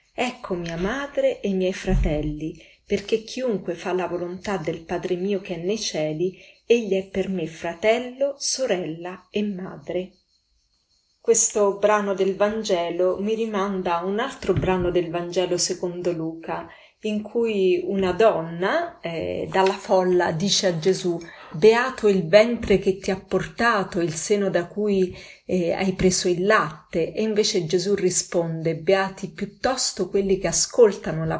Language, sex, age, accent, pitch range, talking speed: Italian, female, 30-49, native, 175-205 Hz, 145 wpm